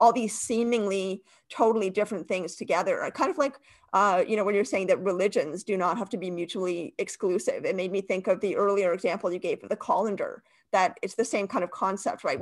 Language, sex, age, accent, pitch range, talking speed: English, female, 40-59, American, 185-225 Hz, 225 wpm